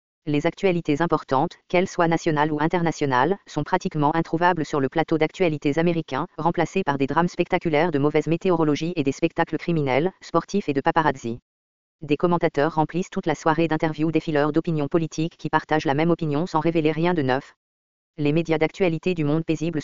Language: English